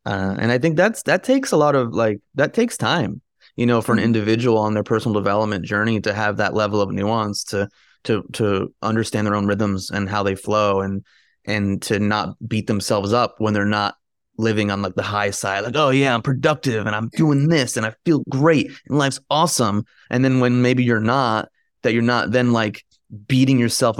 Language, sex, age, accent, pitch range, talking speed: English, male, 20-39, American, 110-130 Hz, 215 wpm